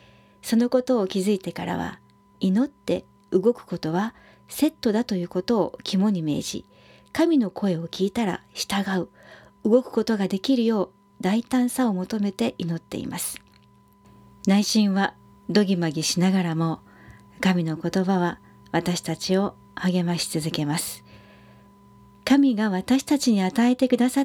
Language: Japanese